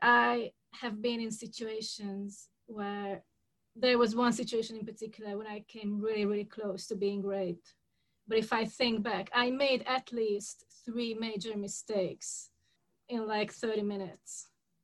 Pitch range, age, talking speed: 200-230 Hz, 30-49, 150 wpm